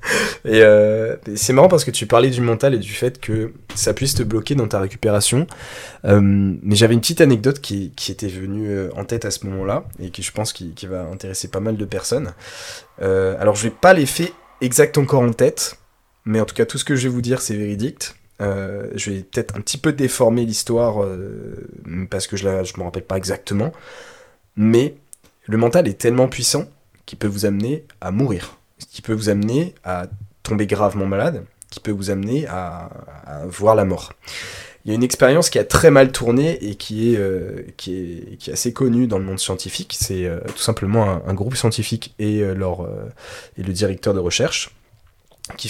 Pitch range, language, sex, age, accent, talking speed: 95-120 Hz, French, male, 20-39, French, 200 wpm